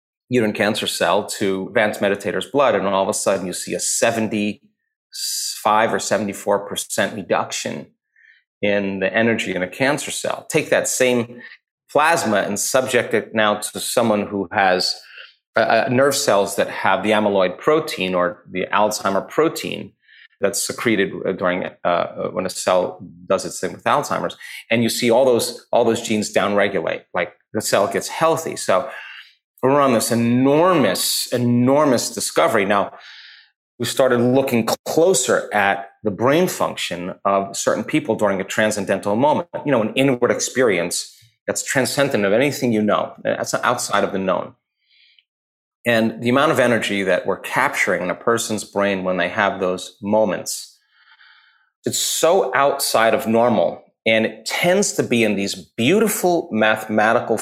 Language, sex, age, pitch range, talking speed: English, male, 30-49, 100-125 Hz, 150 wpm